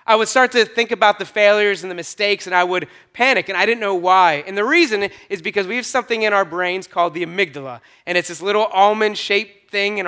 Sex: male